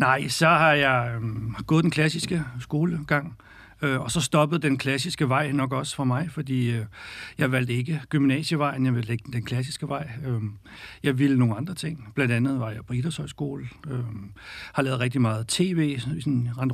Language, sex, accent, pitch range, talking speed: Danish, male, native, 120-145 Hz, 185 wpm